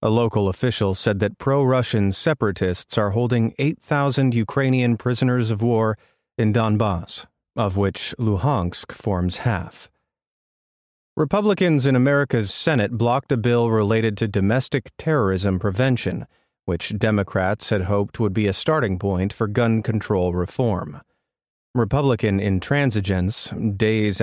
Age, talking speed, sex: 30-49, 120 wpm, male